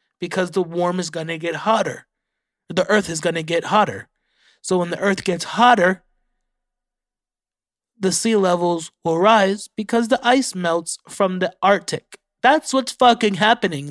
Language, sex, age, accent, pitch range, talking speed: English, male, 20-39, American, 175-220 Hz, 150 wpm